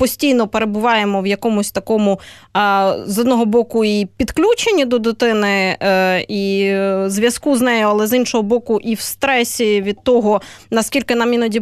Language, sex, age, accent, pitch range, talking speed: Ukrainian, female, 20-39, native, 205-255 Hz, 145 wpm